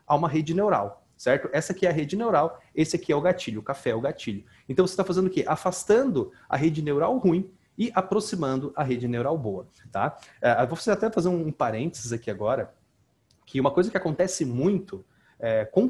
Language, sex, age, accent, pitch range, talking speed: Portuguese, male, 30-49, Brazilian, 135-190 Hz, 220 wpm